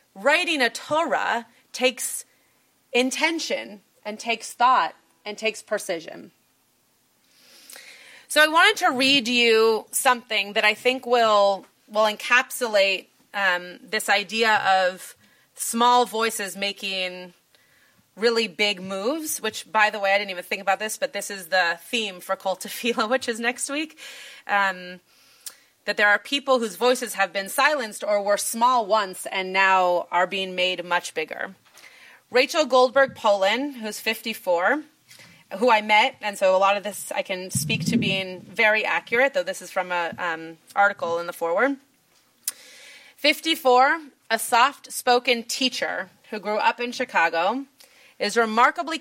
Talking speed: 145 wpm